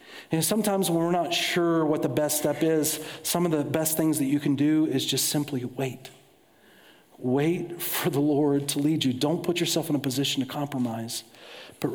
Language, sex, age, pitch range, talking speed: English, male, 40-59, 140-170 Hz, 200 wpm